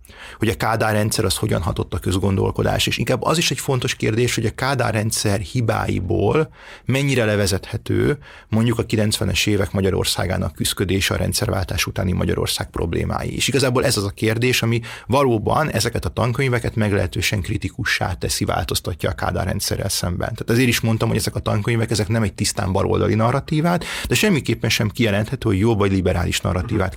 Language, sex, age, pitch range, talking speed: Hungarian, male, 30-49, 100-115 Hz, 170 wpm